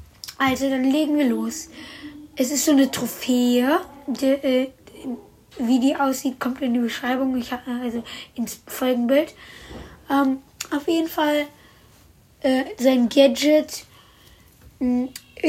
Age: 20-39